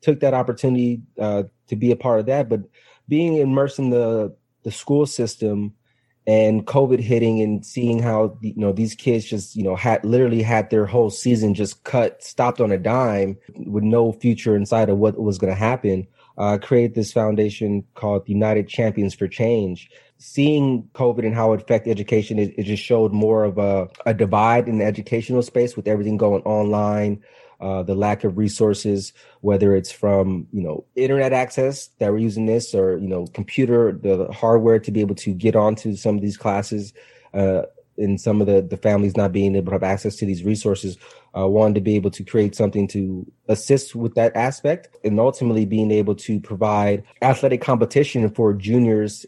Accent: American